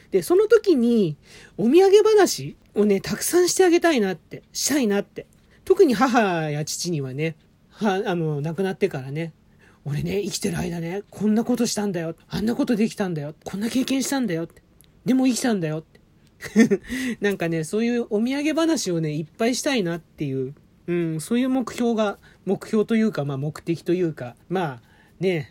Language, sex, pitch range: Japanese, male, 165-245 Hz